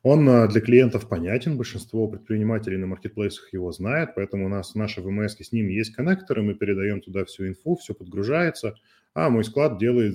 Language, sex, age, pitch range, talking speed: Russian, male, 20-39, 95-115 Hz, 185 wpm